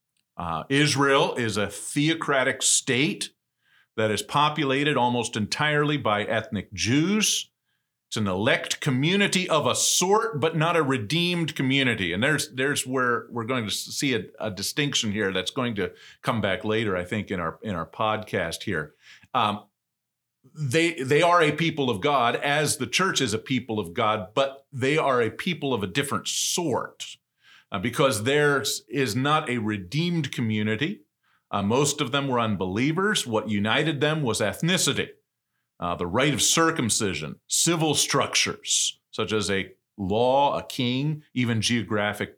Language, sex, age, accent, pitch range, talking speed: English, male, 40-59, American, 110-150 Hz, 155 wpm